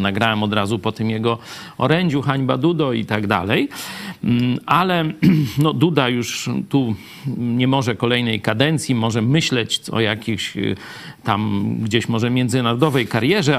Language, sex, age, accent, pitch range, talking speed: Polish, male, 50-69, native, 115-160 Hz, 130 wpm